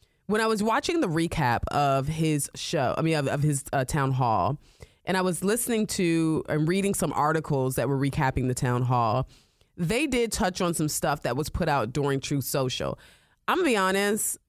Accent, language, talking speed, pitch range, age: American, English, 205 wpm, 135-180 Hz, 30-49